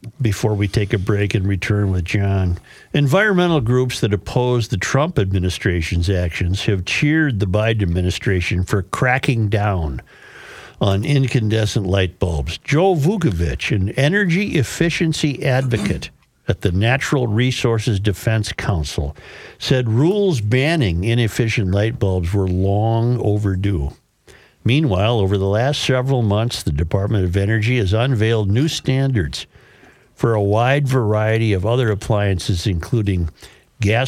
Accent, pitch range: American, 100-135 Hz